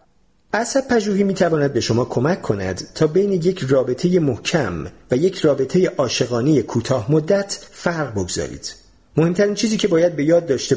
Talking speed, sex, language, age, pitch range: 155 wpm, male, Persian, 40-59, 120-180 Hz